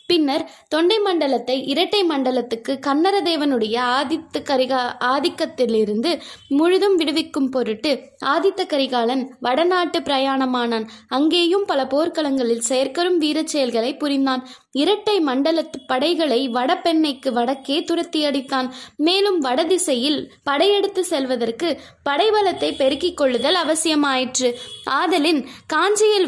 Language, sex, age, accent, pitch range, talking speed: Tamil, female, 20-39, native, 255-330 Hz, 90 wpm